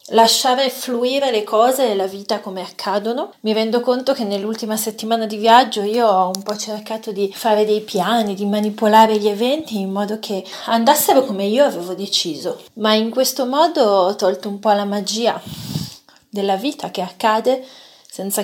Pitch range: 190-220 Hz